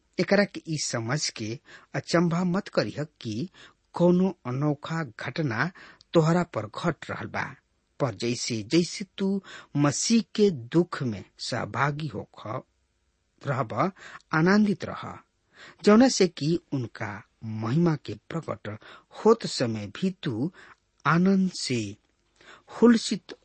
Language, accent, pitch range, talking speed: English, Indian, 120-185 Hz, 110 wpm